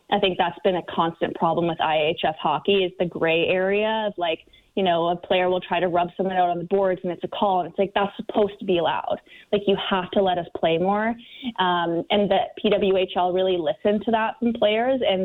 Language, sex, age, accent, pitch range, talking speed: English, female, 20-39, American, 175-200 Hz, 235 wpm